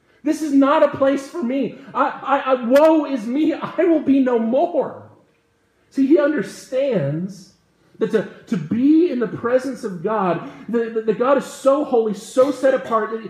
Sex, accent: male, American